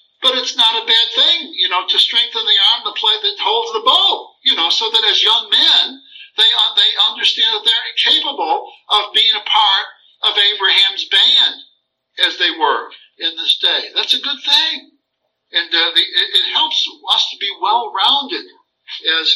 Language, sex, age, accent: English, male, 60-79, American